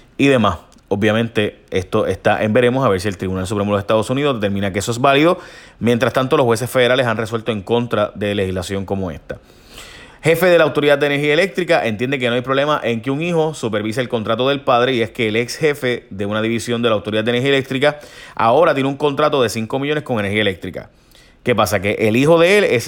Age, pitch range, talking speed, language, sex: 30-49, 105-130 Hz, 230 wpm, Spanish, male